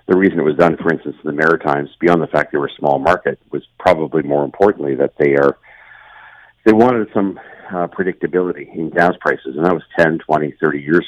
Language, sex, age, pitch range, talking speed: English, male, 50-69, 75-85 Hz, 215 wpm